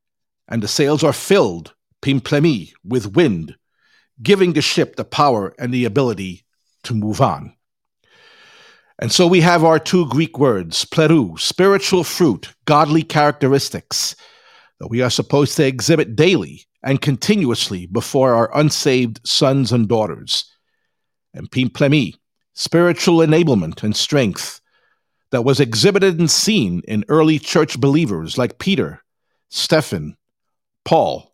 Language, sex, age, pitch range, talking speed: English, male, 50-69, 120-160 Hz, 125 wpm